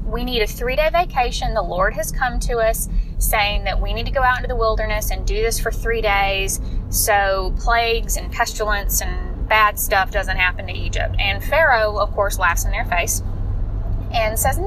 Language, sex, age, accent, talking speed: English, female, 10-29, American, 195 wpm